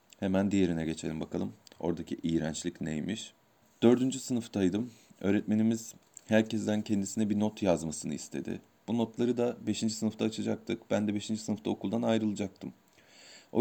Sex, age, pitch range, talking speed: male, 40-59, 100-115 Hz, 130 wpm